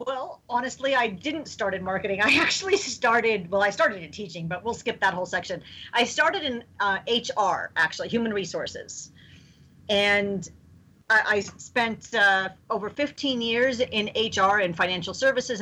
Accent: American